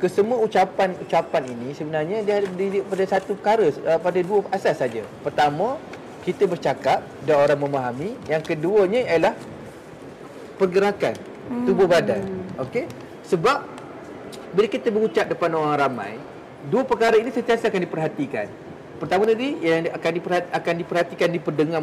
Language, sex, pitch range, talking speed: Malay, male, 160-205 Hz, 120 wpm